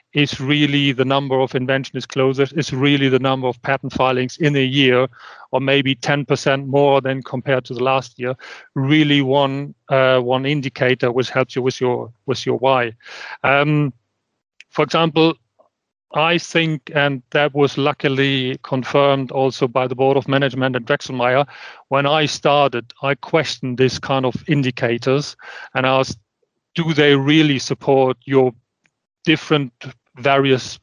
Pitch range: 130-145 Hz